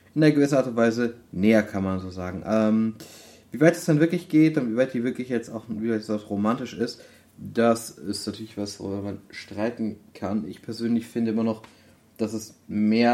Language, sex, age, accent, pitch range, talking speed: German, male, 30-49, German, 105-120 Hz, 210 wpm